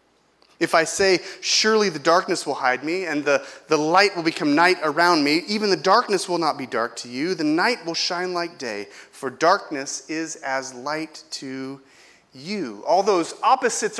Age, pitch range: 30-49, 160-215 Hz